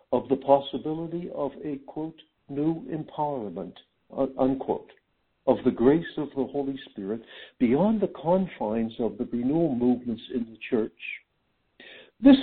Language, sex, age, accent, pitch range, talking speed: English, male, 60-79, American, 130-195 Hz, 130 wpm